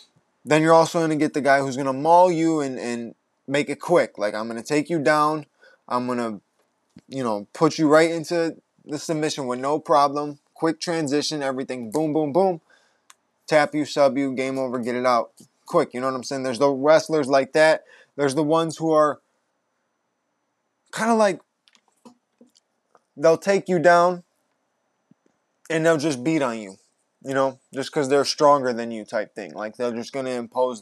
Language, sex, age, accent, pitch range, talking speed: English, male, 20-39, American, 130-165 Hz, 195 wpm